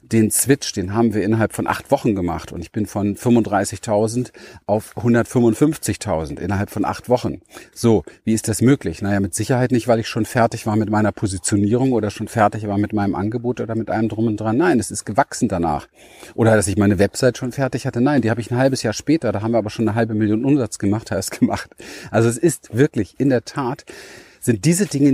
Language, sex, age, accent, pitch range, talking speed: German, male, 40-59, German, 105-130 Hz, 225 wpm